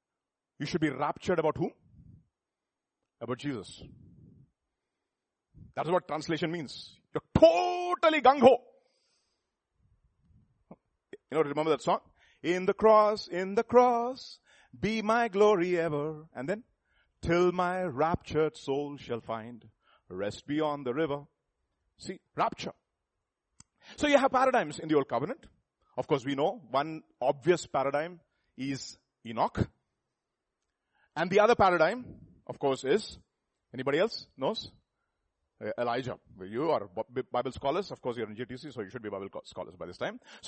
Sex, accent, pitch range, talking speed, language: male, Indian, 145-215 Hz, 135 wpm, English